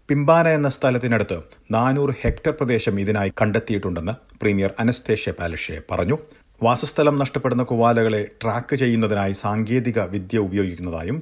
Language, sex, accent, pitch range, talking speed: Malayalam, male, native, 95-120 Hz, 105 wpm